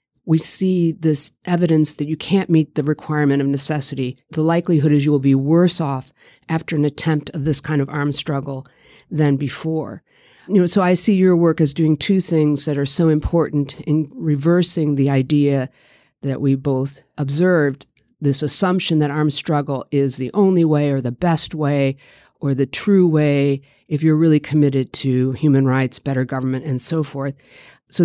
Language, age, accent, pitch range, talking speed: English, 50-69, American, 140-170 Hz, 180 wpm